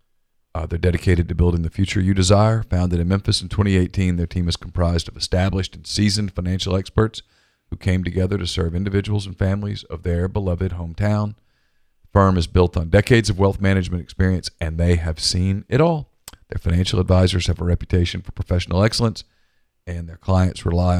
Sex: male